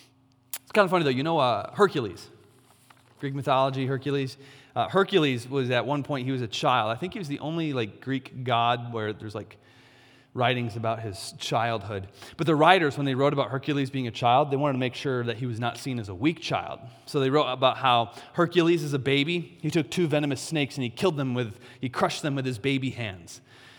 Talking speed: 225 wpm